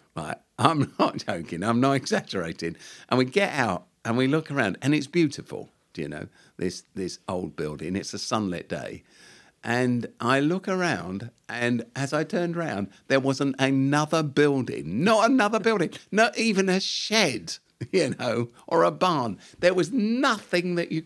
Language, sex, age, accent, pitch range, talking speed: English, male, 50-69, British, 135-200 Hz, 170 wpm